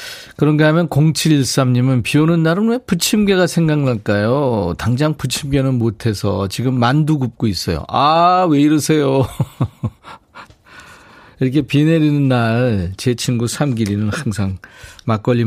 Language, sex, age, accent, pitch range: Korean, male, 40-59, native, 105-150 Hz